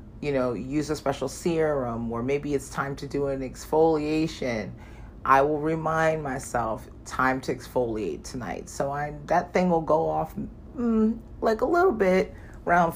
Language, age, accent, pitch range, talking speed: English, 40-59, American, 125-155 Hz, 160 wpm